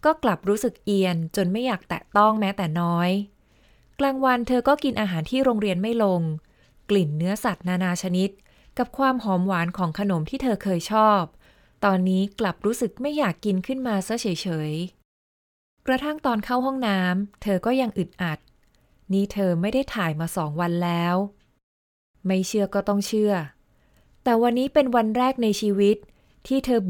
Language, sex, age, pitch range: Thai, female, 20-39, 175-235 Hz